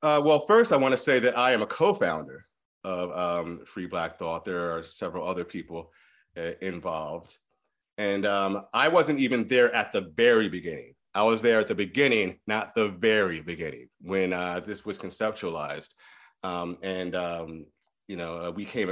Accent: American